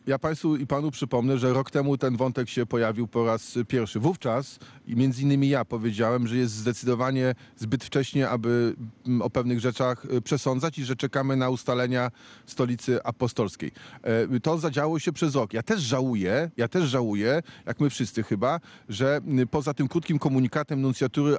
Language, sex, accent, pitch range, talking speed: Polish, male, native, 125-145 Hz, 160 wpm